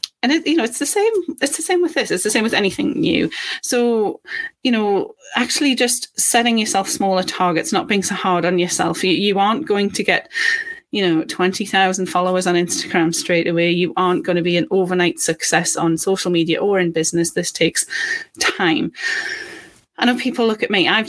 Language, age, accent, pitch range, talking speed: English, 30-49, British, 170-225 Hz, 200 wpm